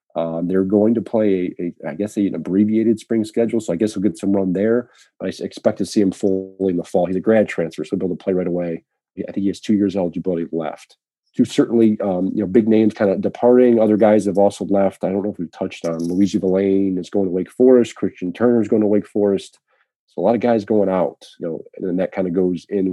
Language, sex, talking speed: English, male, 270 wpm